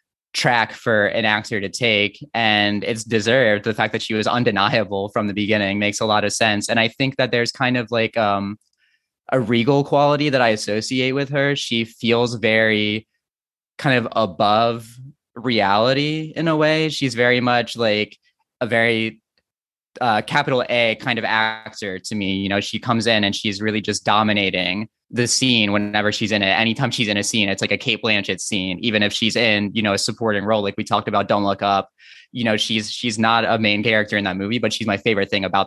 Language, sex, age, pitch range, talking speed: English, male, 20-39, 105-120 Hz, 210 wpm